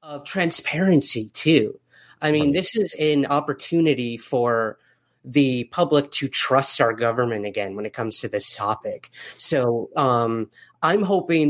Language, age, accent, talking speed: English, 30-49, American, 140 wpm